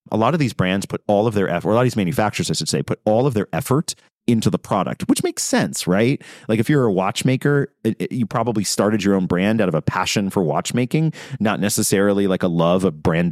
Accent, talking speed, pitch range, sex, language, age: American, 255 wpm, 90-115 Hz, male, English, 30-49